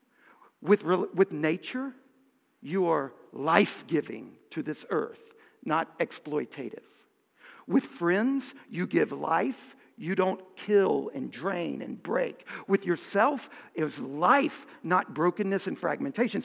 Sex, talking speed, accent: male, 115 wpm, American